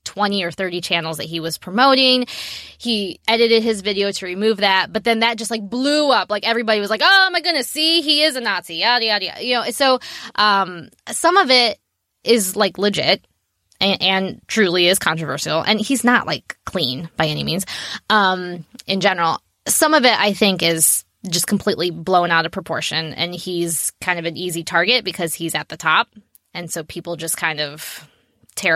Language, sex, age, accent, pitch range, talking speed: English, female, 10-29, American, 180-235 Hz, 200 wpm